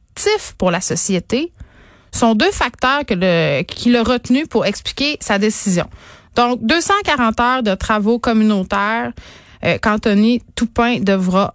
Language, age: French, 30-49